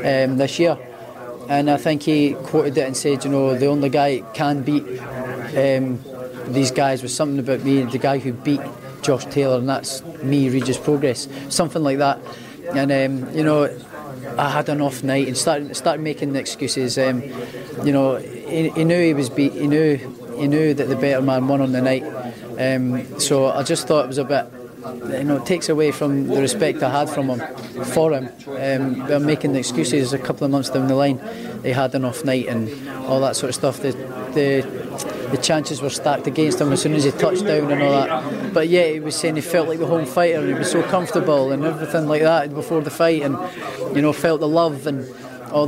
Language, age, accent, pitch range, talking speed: English, 30-49, British, 130-155 Hz, 220 wpm